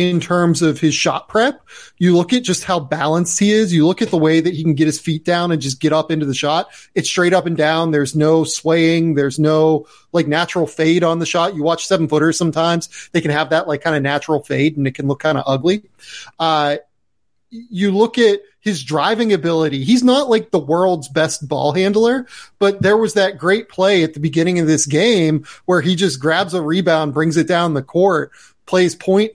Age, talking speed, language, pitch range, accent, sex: 30-49, 220 wpm, English, 155-190 Hz, American, male